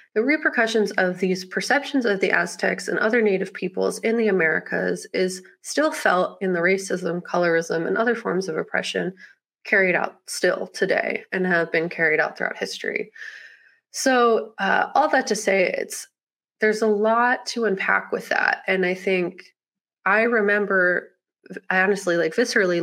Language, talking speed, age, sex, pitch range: English, 160 wpm, 30-49, female, 180-220 Hz